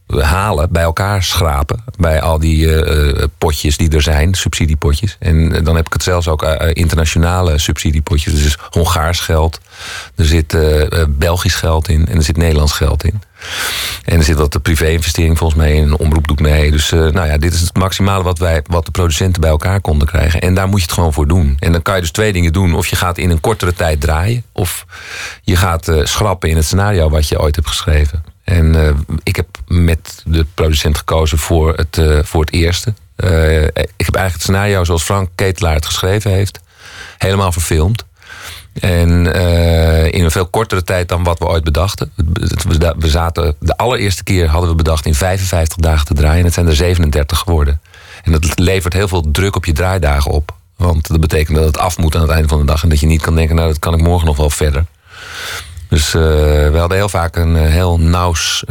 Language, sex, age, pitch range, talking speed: Dutch, male, 40-59, 80-90 Hz, 215 wpm